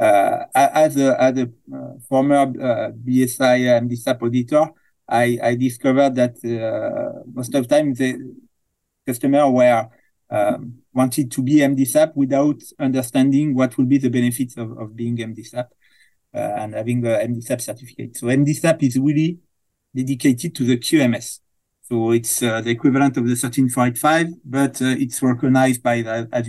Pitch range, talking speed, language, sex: 115-135 Hz, 155 wpm, English, male